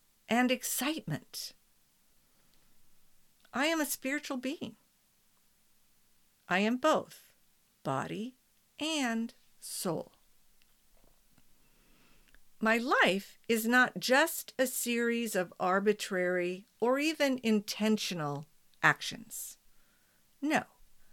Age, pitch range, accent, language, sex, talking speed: 50-69, 180-250 Hz, American, English, female, 75 wpm